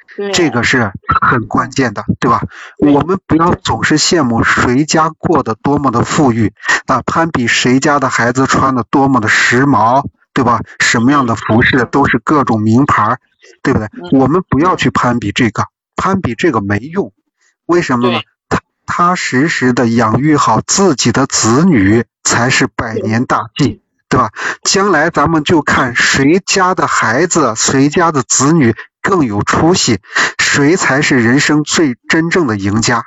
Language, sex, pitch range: Chinese, male, 120-155 Hz